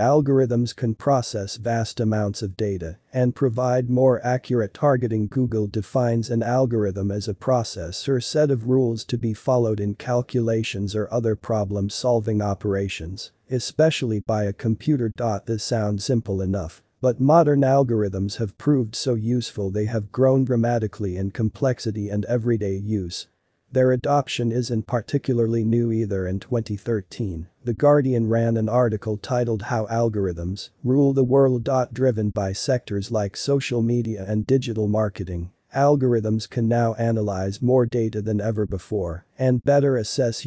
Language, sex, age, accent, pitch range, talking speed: English, male, 40-59, American, 105-125 Hz, 145 wpm